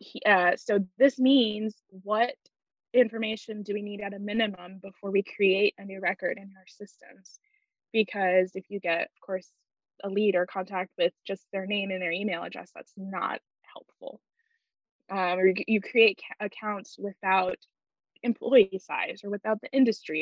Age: 10-29